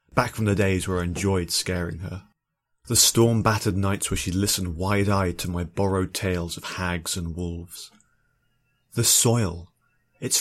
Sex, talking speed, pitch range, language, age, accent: male, 155 wpm, 95-125 Hz, English, 30-49, British